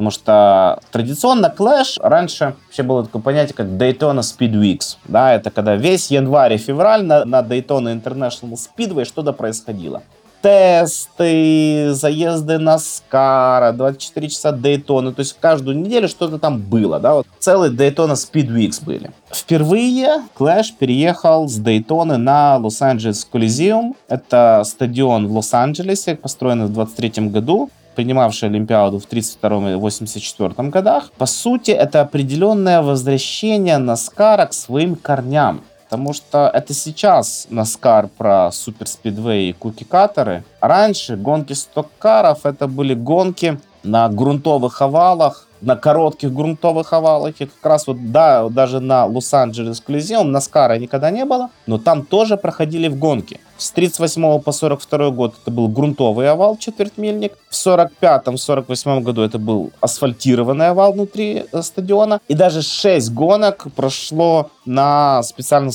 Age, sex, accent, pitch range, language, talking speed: 20-39, male, native, 120-165 Hz, Russian, 135 wpm